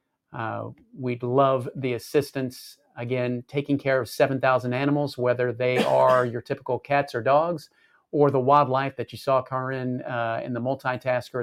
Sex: male